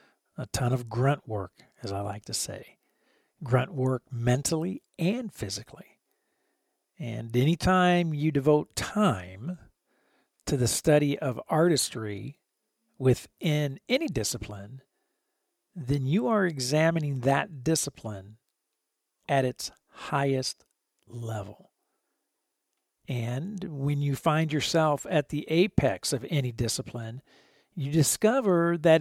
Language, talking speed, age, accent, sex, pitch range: English, 110 wpm, 50-69, American, male, 120-165 Hz